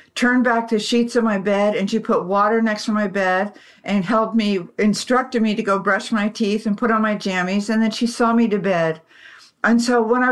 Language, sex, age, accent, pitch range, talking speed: English, female, 60-79, American, 195-230 Hz, 240 wpm